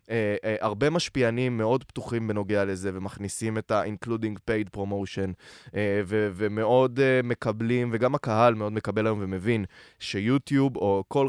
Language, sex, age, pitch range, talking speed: Hebrew, male, 20-39, 100-125 Hz, 145 wpm